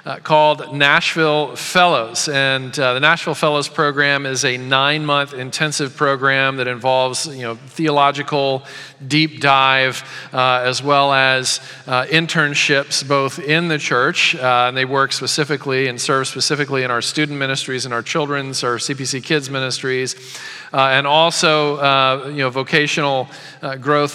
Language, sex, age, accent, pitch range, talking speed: English, male, 40-59, American, 135-155 Hz, 150 wpm